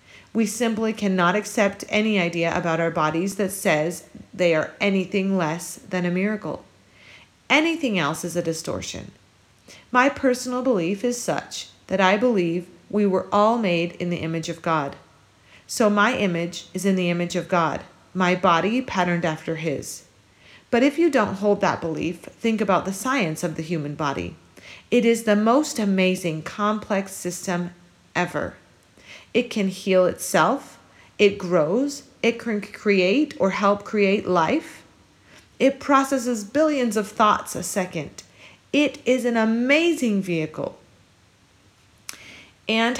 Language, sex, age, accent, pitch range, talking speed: English, female, 40-59, American, 170-220 Hz, 145 wpm